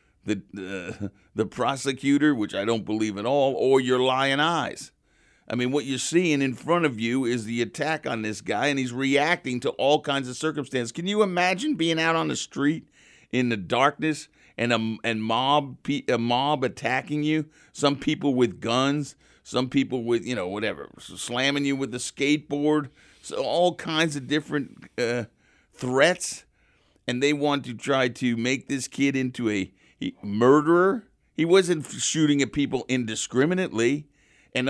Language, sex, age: English, male, 50-69